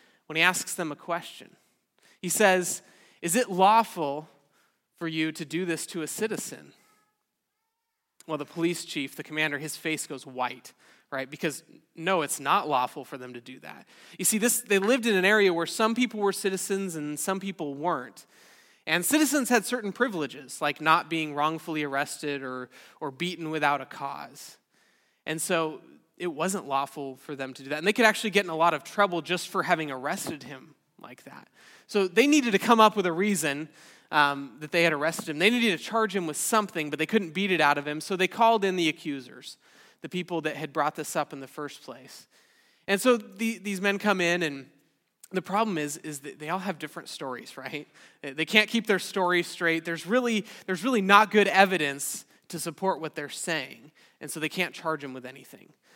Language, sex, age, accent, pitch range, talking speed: English, male, 20-39, American, 150-200 Hz, 205 wpm